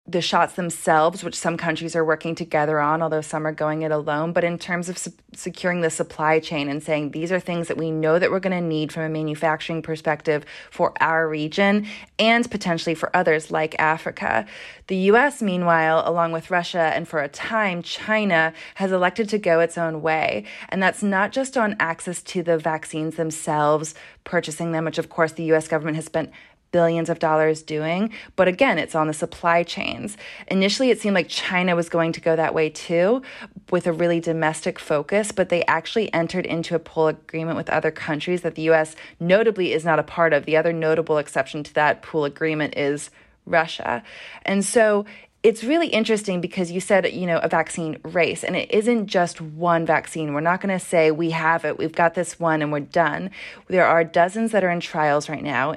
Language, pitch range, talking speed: English, 155-180 Hz, 205 wpm